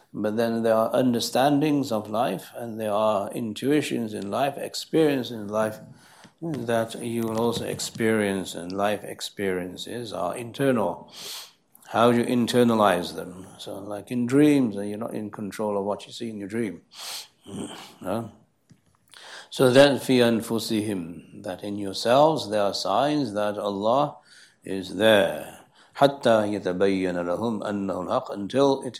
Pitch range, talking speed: 95-120 Hz, 130 wpm